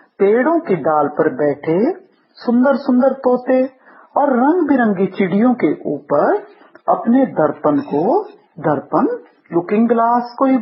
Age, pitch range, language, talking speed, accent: 50-69, 190-320 Hz, Hindi, 125 wpm, native